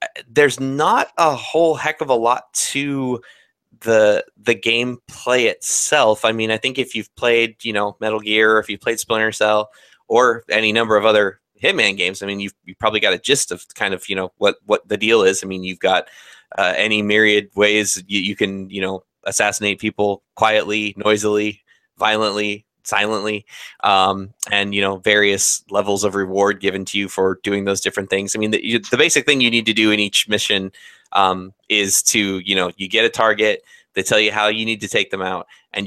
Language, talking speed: English, 205 wpm